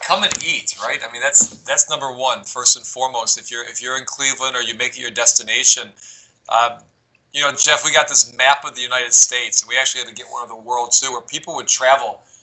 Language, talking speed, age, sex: English, 250 wpm, 20-39, male